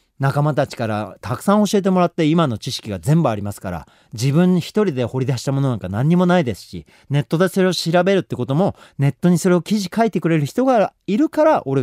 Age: 40-59